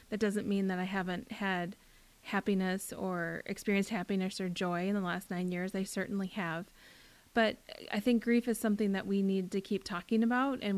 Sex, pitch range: female, 190-230 Hz